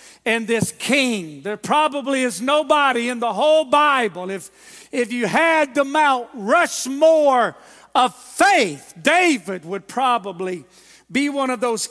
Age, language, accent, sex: 50-69, English, American, male